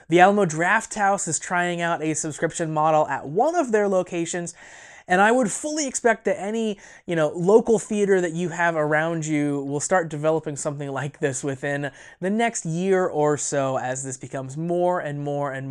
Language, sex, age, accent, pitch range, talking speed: English, male, 20-39, American, 150-200 Hz, 185 wpm